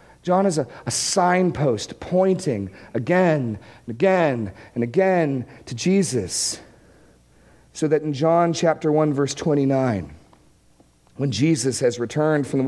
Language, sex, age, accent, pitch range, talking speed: English, male, 40-59, American, 105-150 Hz, 130 wpm